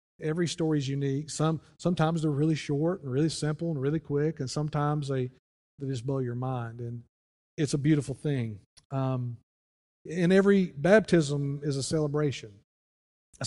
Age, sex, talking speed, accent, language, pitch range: 40-59, male, 160 wpm, American, English, 130-160 Hz